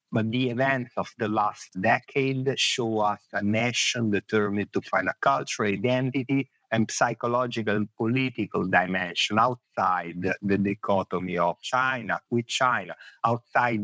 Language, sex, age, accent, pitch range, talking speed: English, male, 50-69, Italian, 100-125 Hz, 130 wpm